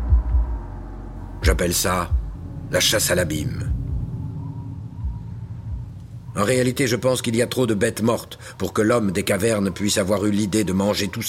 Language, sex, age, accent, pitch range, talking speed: French, male, 50-69, French, 85-115 Hz, 155 wpm